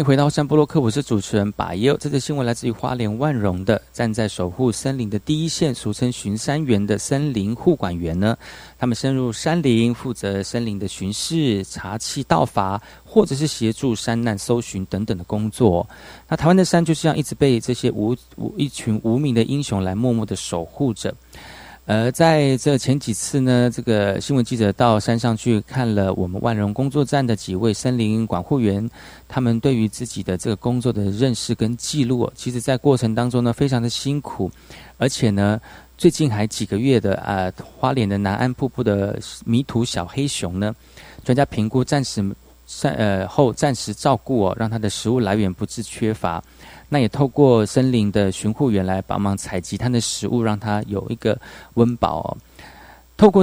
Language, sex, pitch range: Chinese, male, 100-130 Hz